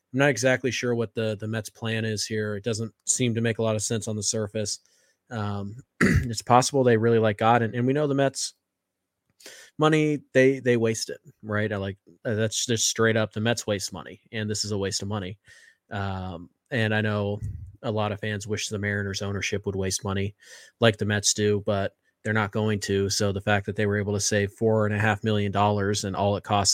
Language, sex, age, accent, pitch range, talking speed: English, male, 20-39, American, 100-115 Hz, 225 wpm